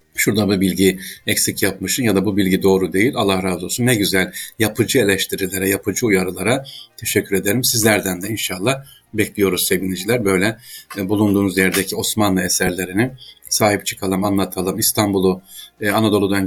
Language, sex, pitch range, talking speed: Turkish, male, 95-130 Hz, 135 wpm